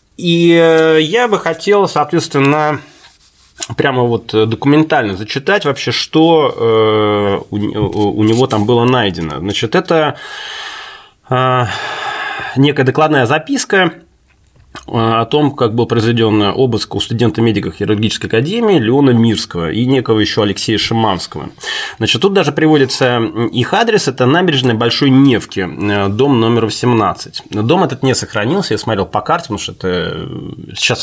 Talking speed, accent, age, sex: 125 wpm, native, 20-39, male